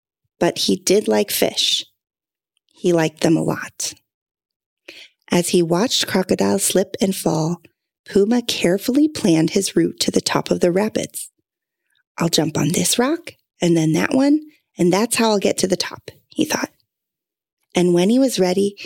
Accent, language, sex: American, English, female